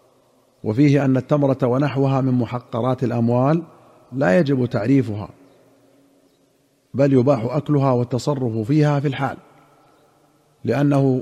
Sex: male